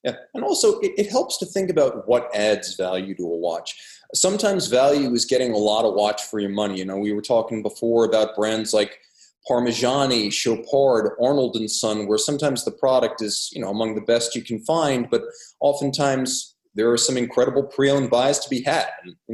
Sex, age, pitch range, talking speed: male, 30-49, 105-135 Hz, 200 wpm